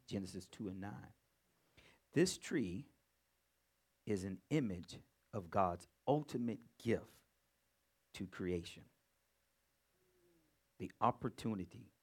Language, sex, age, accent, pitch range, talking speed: English, male, 50-69, American, 90-130 Hz, 85 wpm